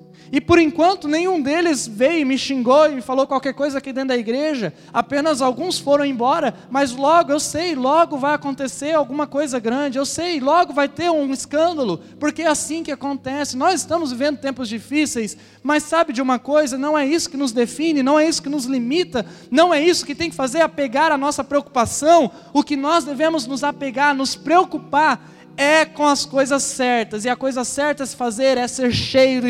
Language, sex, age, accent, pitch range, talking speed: Portuguese, male, 20-39, Brazilian, 230-295 Hz, 205 wpm